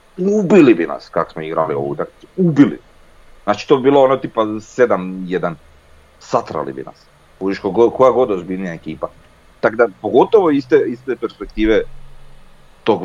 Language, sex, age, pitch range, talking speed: Croatian, male, 40-59, 85-145 Hz, 145 wpm